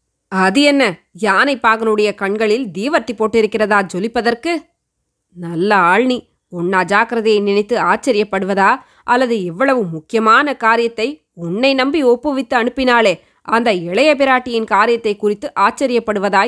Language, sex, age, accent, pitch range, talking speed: Tamil, female, 20-39, native, 220-290 Hz, 100 wpm